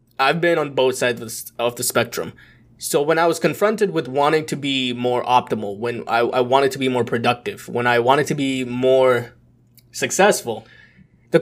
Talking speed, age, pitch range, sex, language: 185 wpm, 20-39, 125-160 Hz, male, English